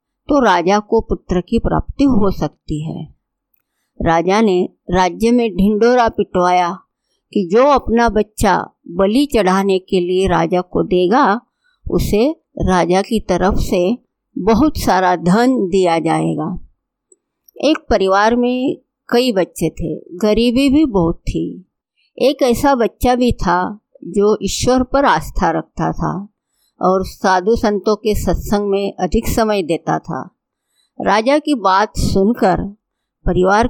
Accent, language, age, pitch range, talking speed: native, Hindi, 50-69, 185-255 Hz, 130 wpm